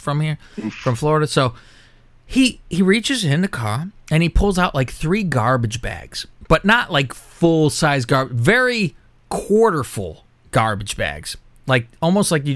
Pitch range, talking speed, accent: 120-175 Hz, 160 wpm, American